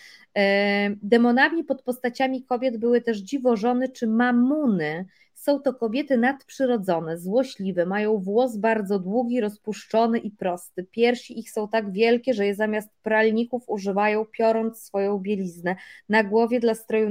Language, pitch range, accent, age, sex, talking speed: Polish, 195-235 Hz, native, 20-39, female, 135 wpm